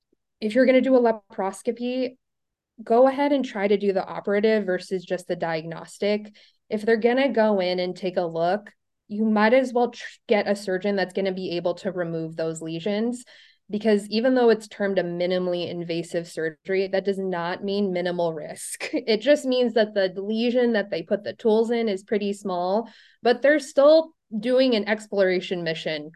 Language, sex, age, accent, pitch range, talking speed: English, female, 20-39, American, 180-225 Hz, 190 wpm